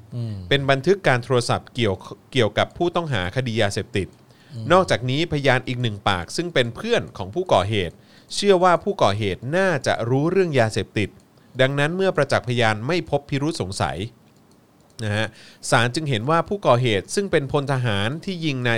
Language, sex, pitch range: Thai, male, 110-150 Hz